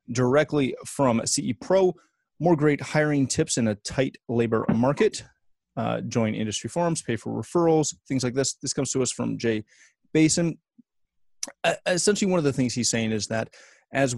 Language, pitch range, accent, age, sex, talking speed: English, 105-130 Hz, American, 30-49, male, 175 wpm